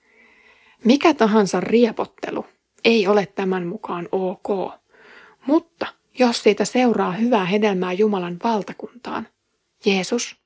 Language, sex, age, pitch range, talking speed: Finnish, female, 30-49, 190-230 Hz, 100 wpm